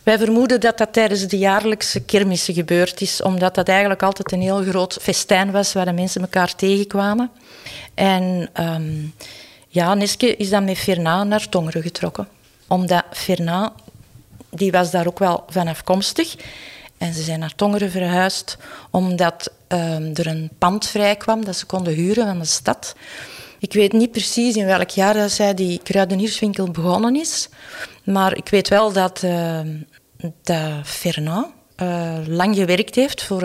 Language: Dutch